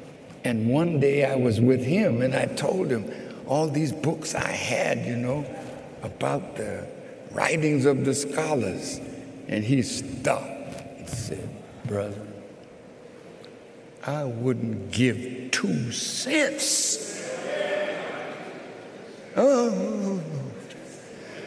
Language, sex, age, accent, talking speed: English, male, 60-79, American, 100 wpm